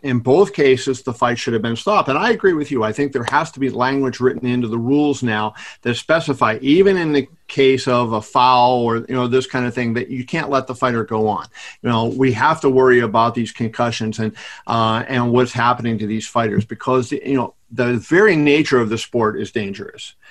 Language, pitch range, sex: English, 115-140 Hz, male